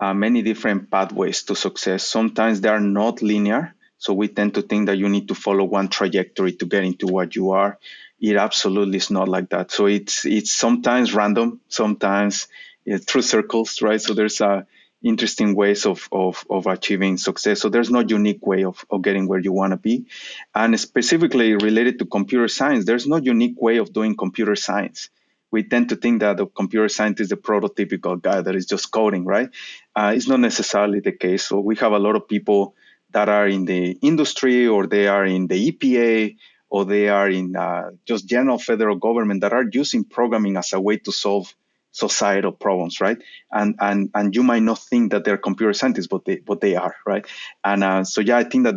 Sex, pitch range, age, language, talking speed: male, 100-115 Hz, 30-49, English, 205 wpm